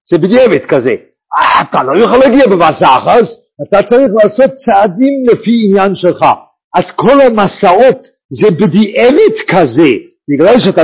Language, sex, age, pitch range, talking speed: English, male, 50-69, 165-255 Hz, 115 wpm